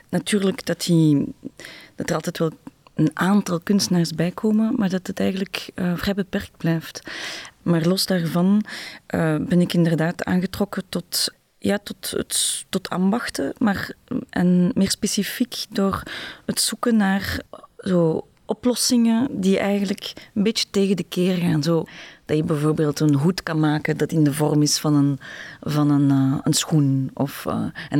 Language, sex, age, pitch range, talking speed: Dutch, female, 30-49, 150-180 Hz, 150 wpm